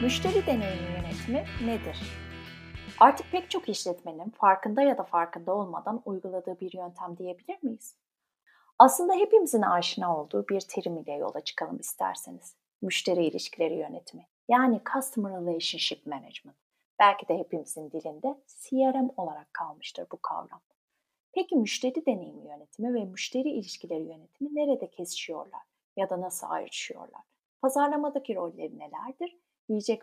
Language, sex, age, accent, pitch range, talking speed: Turkish, female, 30-49, native, 175-260 Hz, 125 wpm